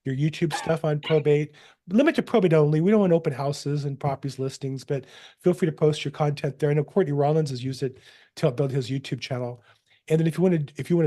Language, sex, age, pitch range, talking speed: English, male, 40-59, 130-155 Hz, 255 wpm